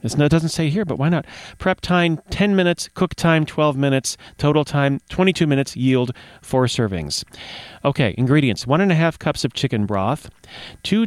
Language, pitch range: English, 125-160 Hz